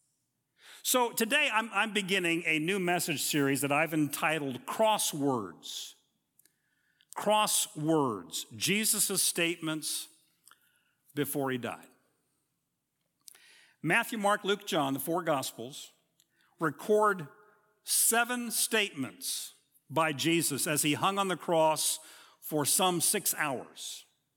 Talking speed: 95 wpm